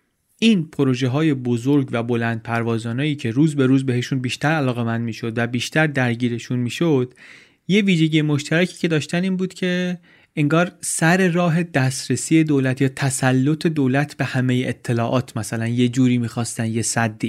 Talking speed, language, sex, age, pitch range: 155 wpm, Persian, male, 30-49, 120-150 Hz